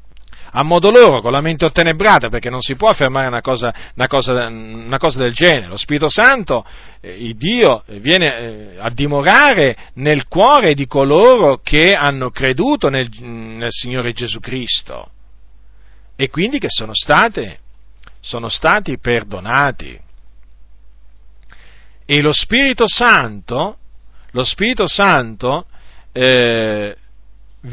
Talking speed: 125 wpm